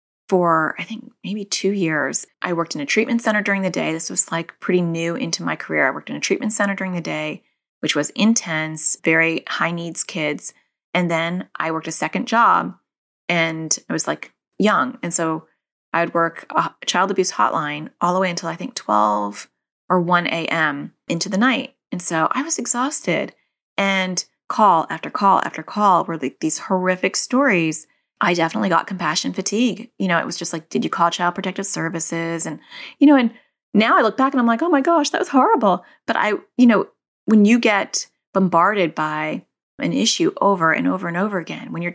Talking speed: 205 wpm